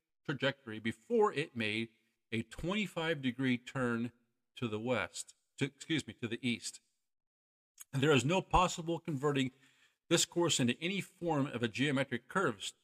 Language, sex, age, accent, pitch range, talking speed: English, male, 50-69, American, 115-155 Hz, 145 wpm